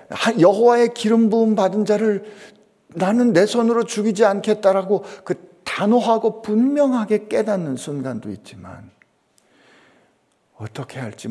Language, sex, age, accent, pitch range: Korean, male, 60-79, native, 120-195 Hz